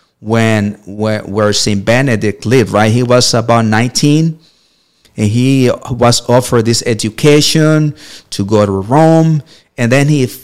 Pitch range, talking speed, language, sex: 105-125 Hz, 140 wpm, English, male